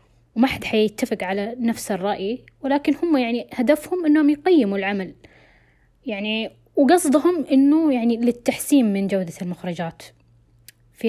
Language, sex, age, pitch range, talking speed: Arabic, female, 20-39, 195-260 Hz, 120 wpm